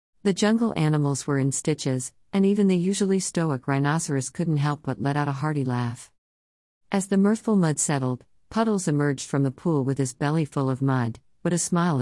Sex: female